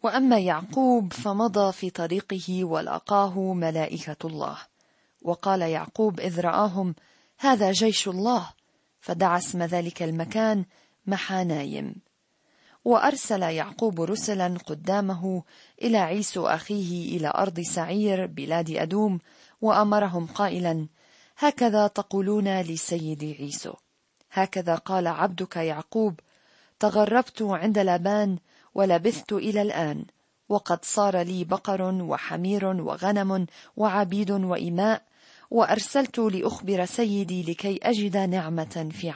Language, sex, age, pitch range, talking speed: Arabic, female, 40-59, 175-210 Hz, 100 wpm